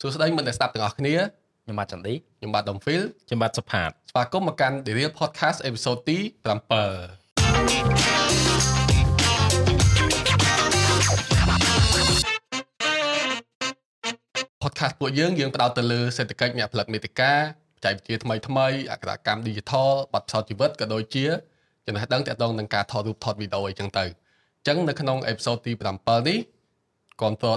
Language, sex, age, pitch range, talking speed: English, male, 20-39, 105-145 Hz, 55 wpm